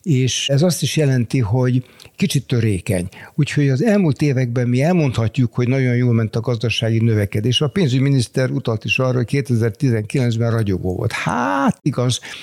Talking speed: 155 wpm